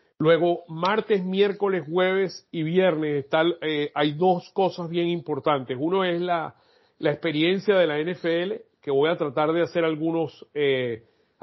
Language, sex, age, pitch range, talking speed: Spanish, male, 40-59, 145-170 Hz, 150 wpm